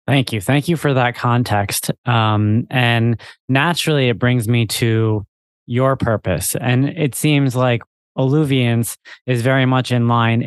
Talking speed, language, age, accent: 150 wpm, English, 20-39, American